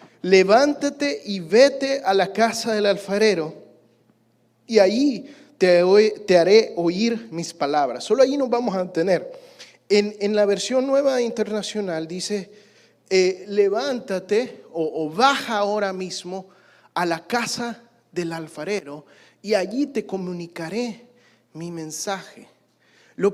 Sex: male